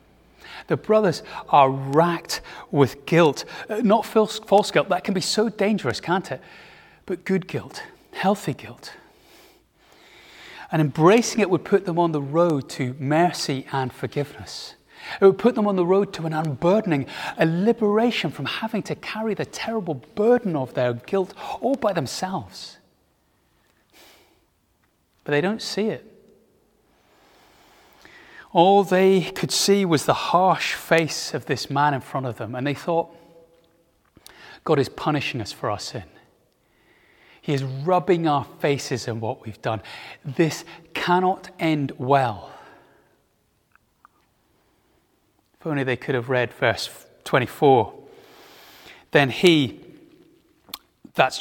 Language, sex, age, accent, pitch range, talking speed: English, male, 30-49, British, 140-200 Hz, 135 wpm